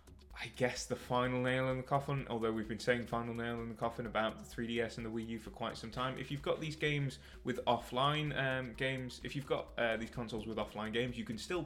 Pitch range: 110-135 Hz